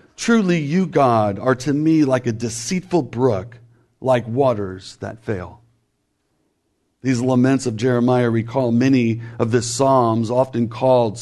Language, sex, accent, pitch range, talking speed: English, male, American, 115-155 Hz, 135 wpm